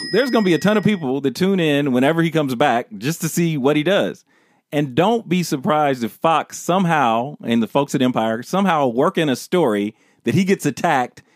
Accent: American